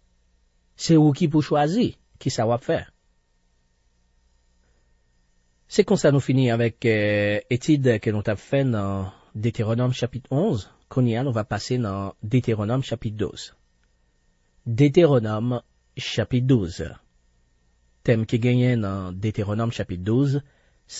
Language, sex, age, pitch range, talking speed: French, male, 40-59, 95-130 Hz, 115 wpm